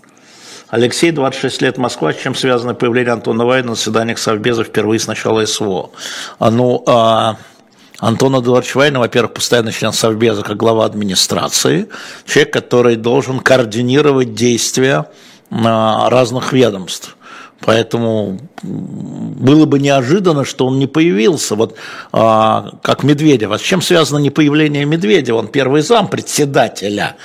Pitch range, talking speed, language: 115-135 Hz, 130 wpm, Russian